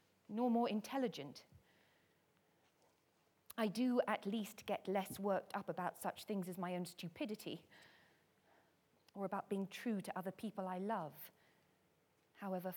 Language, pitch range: English, 170-210 Hz